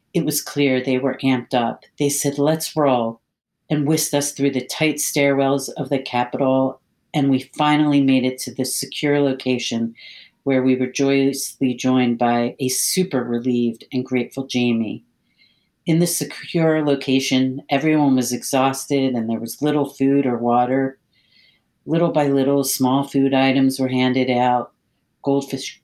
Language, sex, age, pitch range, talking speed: English, female, 50-69, 125-140 Hz, 155 wpm